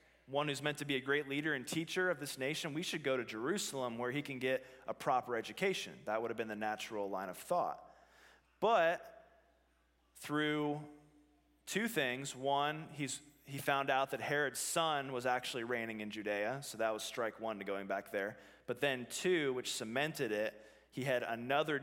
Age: 20-39